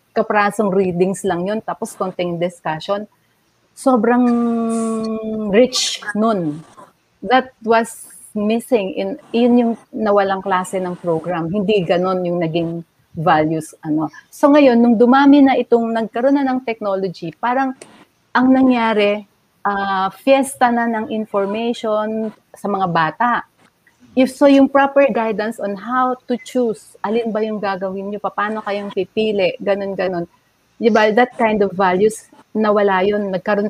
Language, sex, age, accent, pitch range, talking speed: Filipino, female, 40-59, native, 185-235 Hz, 135 wpm